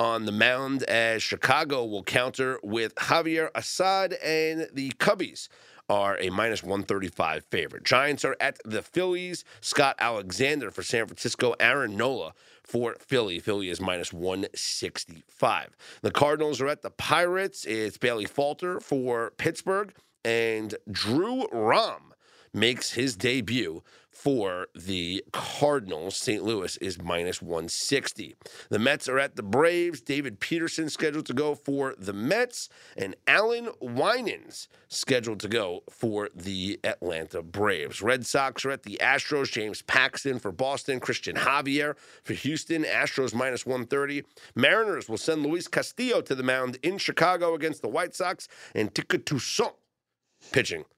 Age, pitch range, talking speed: 40-59, 110-155 Hz, 140 wpm